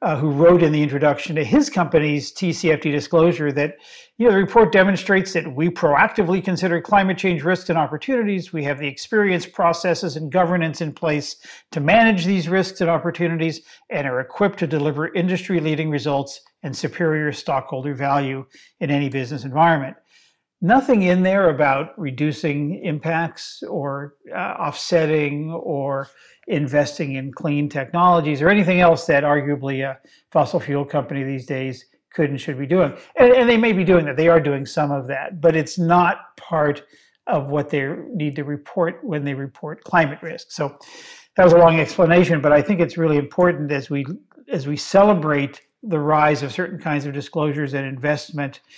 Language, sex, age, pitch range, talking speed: English, male, 50-69, 145-175 Hz, 170 wpm